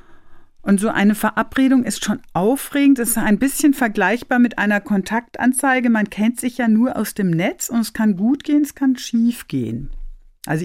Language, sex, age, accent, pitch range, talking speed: German, female, 50-69, German, 160-225 Hz, 185 wpm